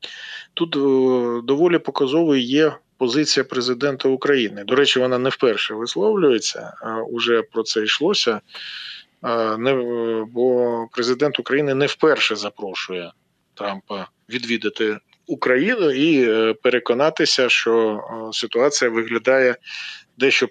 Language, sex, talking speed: Ukrainian, male, 95 wpm